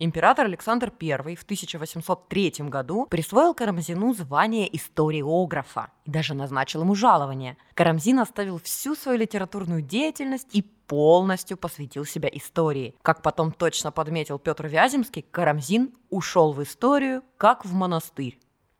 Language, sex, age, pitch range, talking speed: Russian, female, 20-39, 150-205 Hz, 125 wpm